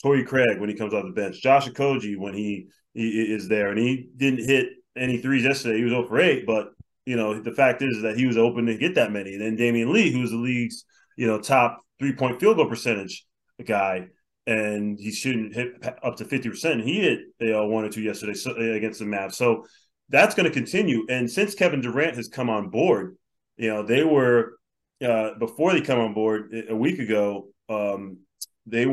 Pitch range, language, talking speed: 110-140 Hz, English, 215 wpm